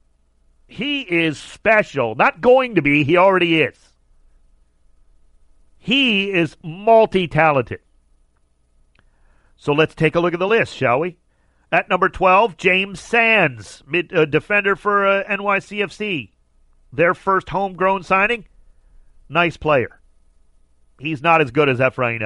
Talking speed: 125 wpm